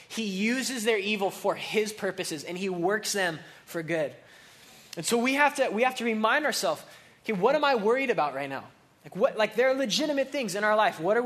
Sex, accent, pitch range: male, American, 200-245 Hz